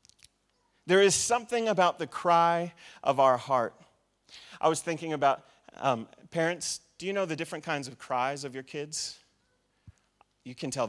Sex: male